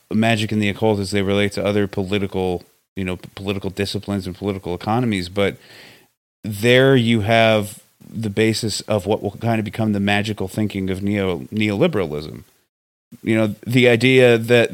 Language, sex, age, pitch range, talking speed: English, male, 30-49, 95-115 Hz, 165 wpm